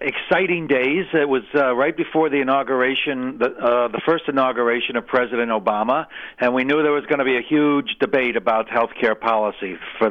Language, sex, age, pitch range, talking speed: English, male, 60-79, 110-130 Hz, 195 wpm